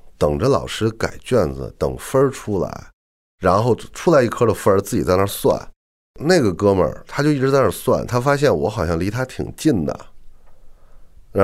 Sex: male